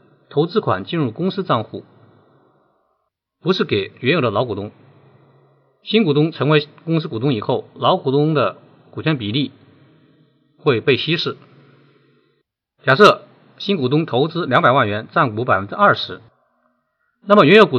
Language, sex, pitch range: Chinese, male, 125-155 Hz